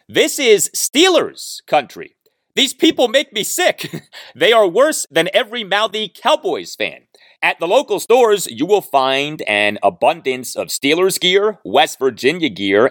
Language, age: English, 30-49